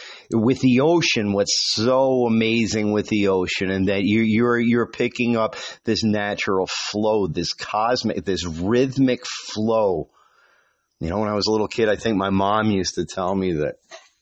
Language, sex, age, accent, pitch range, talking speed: English, male, 50-69, American, 90-135 Hz, 175 wpm